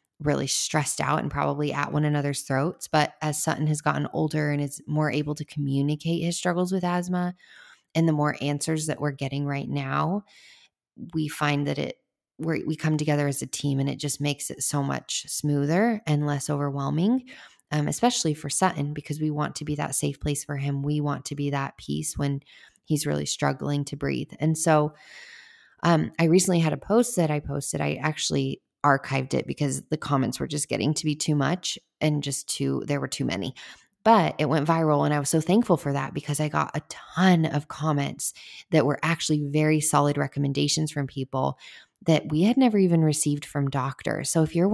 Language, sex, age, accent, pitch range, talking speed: English, female, 20-39, American, 145-160 Hz, 200 wpm